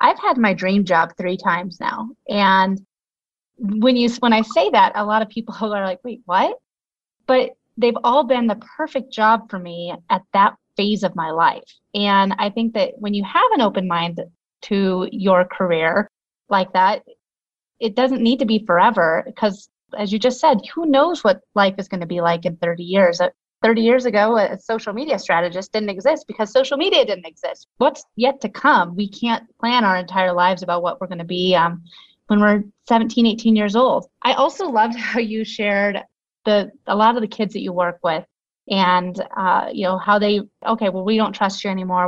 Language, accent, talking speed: English, American, 200 wpm